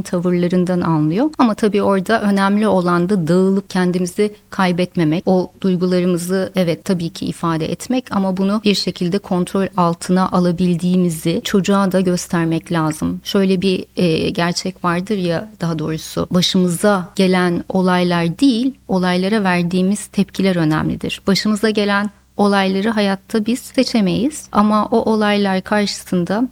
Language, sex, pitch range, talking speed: Turkish, female, 180-205 Hz, 125 wpm